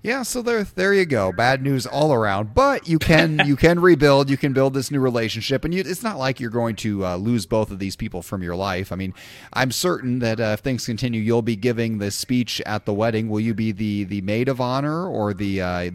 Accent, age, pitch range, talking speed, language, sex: American, 30-49, 100-130 Hz, 250 wpm, English, male